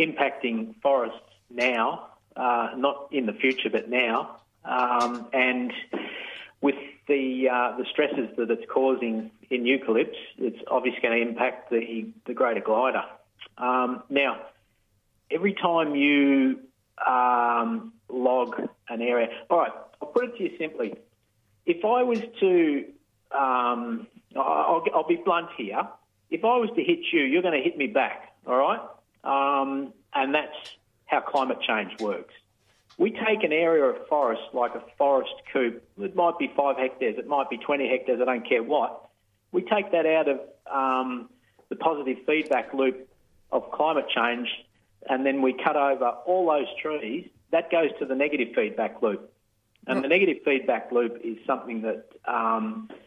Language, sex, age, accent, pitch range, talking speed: English, male, 40-59, Australian, 120-160 Hz, 160 wpm